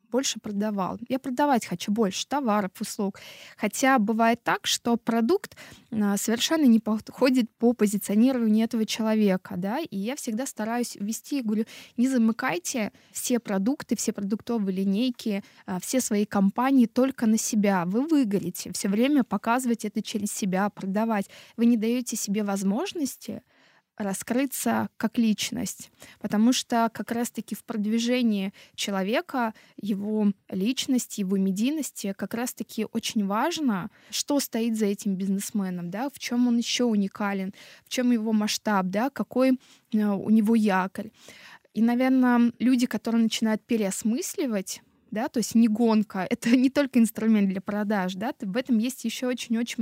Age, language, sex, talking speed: 20-39, Russian, female, 135 wpm